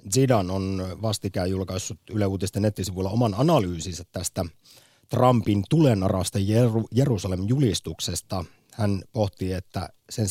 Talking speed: 100 wpm